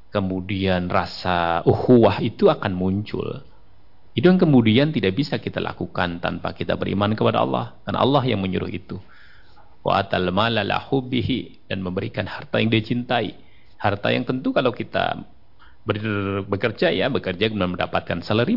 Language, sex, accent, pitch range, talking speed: Indonesian, male, native, 90-125 Hz, 125 wpm